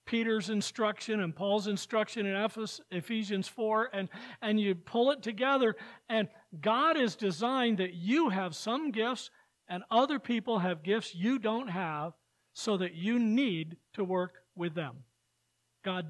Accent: American